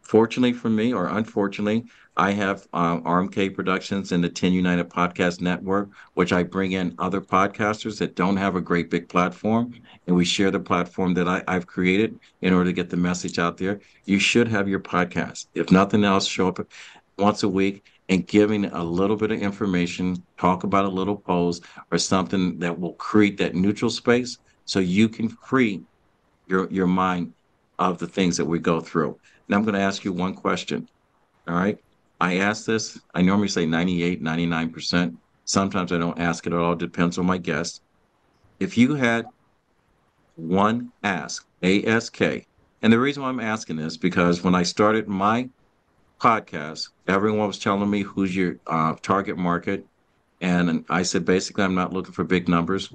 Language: English